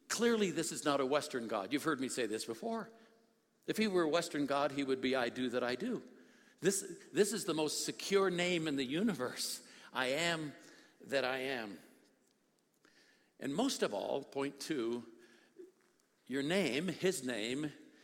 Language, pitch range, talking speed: English, 135-165 Hz, 175 wpm